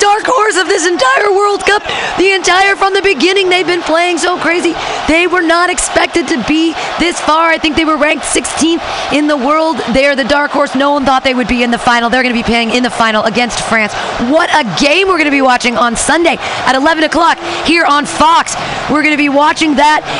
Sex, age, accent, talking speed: female, 30-49, American, 235 wpm